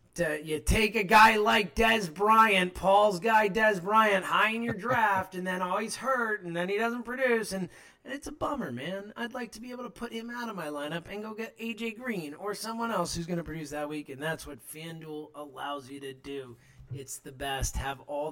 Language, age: English, 30-49